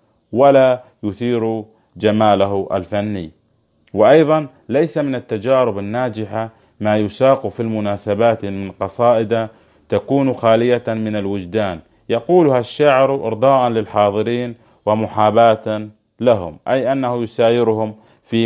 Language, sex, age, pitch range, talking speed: Arabic, male, 30-49, 100-120 Hz, 95 wpm